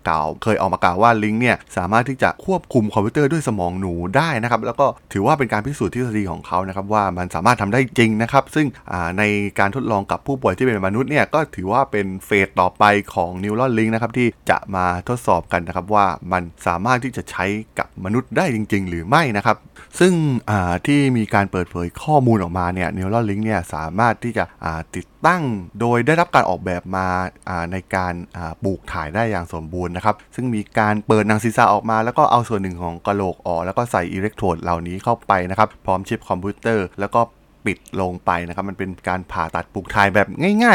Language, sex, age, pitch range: Thai, male, 20-39, 90-120 Hz